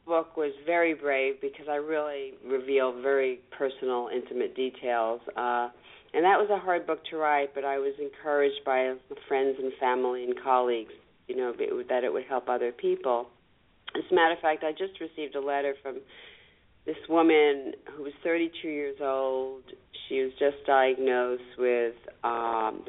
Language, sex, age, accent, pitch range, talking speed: English, female, 40-59, American, 130-165 Hz, 170 wpm